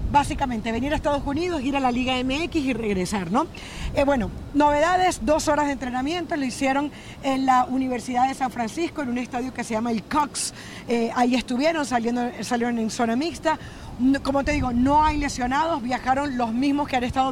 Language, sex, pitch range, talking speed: Spanish, female, 240-290 Hz, 195 wpm